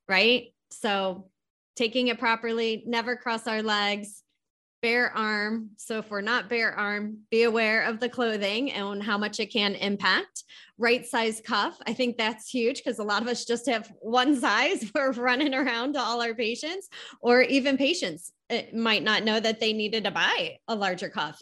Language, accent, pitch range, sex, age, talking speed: English, American, 205-255 Hz, female, 20-39, 185 wpm